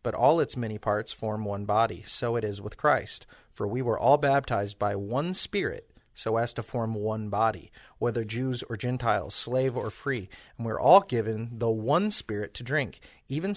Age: 30-49